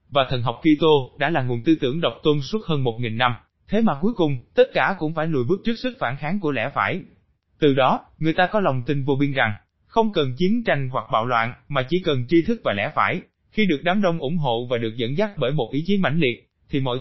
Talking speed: 270 wpm